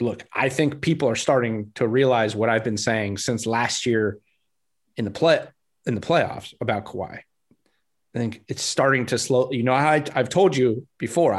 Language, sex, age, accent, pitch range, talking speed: English, male, 30-49, American, 110-140 Hz, 190 wpm